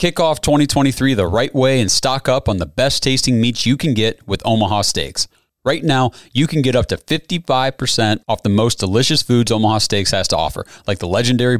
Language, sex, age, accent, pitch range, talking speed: English, male, 30-49, American, 105-135 Hz, 210 wpm